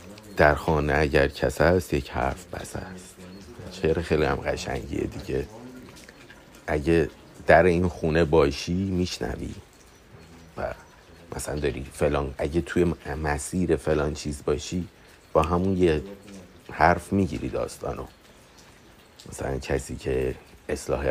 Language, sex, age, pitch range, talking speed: Persian, male, 50-69, 75-95 Hz, 110 wpm